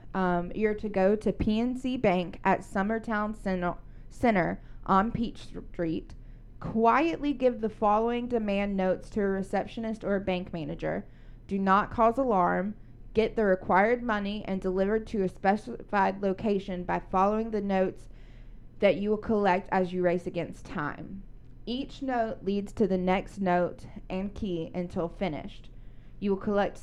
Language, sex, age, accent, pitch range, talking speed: English, female, 20-39, American, 175-220 Hz, 150 wpm